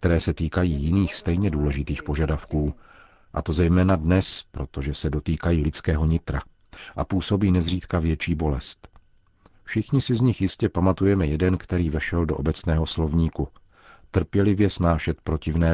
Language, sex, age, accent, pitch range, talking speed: Czech, male, 50-69, native, 75-95 Hz, 135 wpm